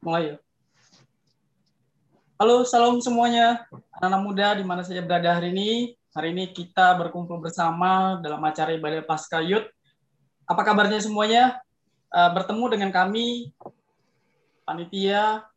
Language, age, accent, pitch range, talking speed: Indonesian, 20-39, native, 180-225 Hz, 110 wpm